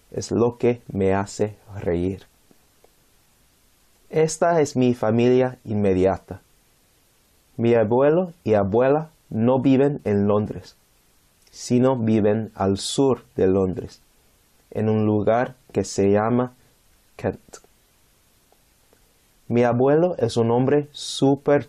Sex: male